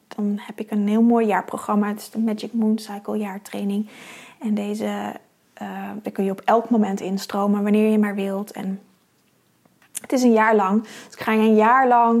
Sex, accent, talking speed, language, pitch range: female, Dutch, 200 wpm, Dutch, 210-235 Hz